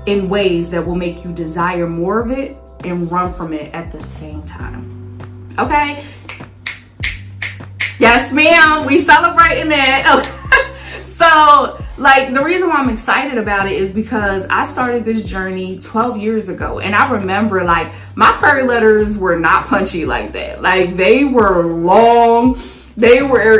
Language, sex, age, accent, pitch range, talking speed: English, female, 20-39, American, 175-235 Hz, 155 wpm